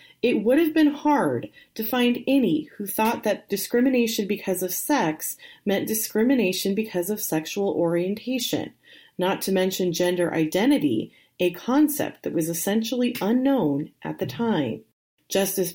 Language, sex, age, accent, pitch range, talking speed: English, female, 30-49, American, 185-250 Hz, 135 wpm